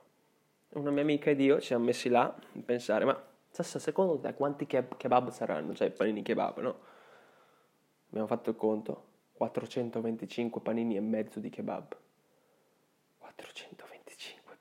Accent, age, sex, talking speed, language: native, 20-39, male, 130 wpm, Italian